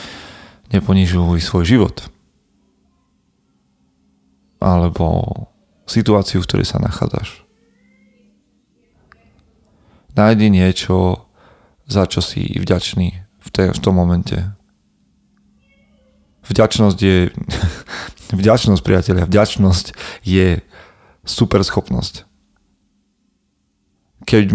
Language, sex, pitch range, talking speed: Slovak, male, 90-105 Hz, 70 wpm